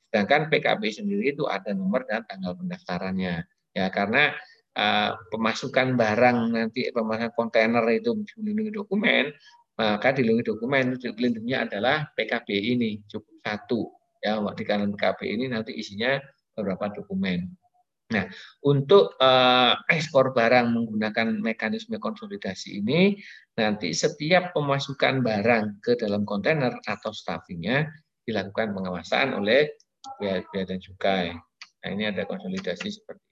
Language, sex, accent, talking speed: Indonesian, male, native, 120 wpm